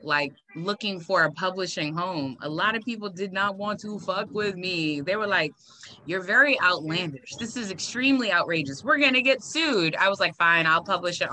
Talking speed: 200 wpm